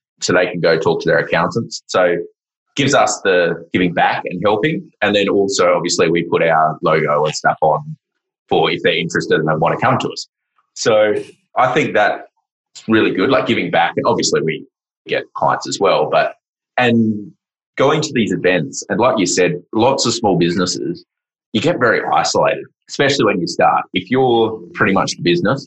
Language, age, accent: English, 20-39, Australian